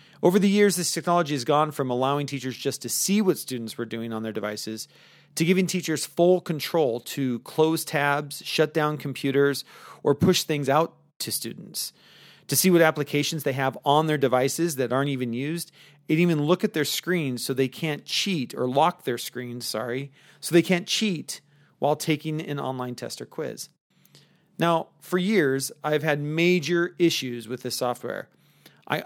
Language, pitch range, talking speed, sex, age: English, 135-170 Hz, 180 wpm, male, 40-59